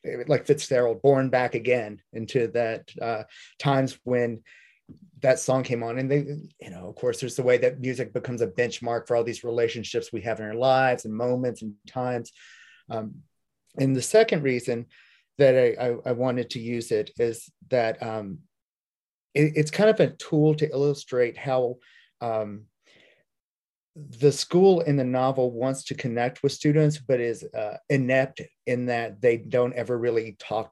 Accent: American